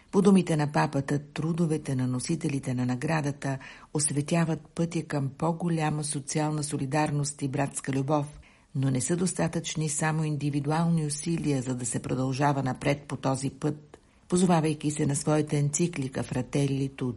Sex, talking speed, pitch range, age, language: female, 135 wpm, 135-155 Hz, 60-79, Bulgarian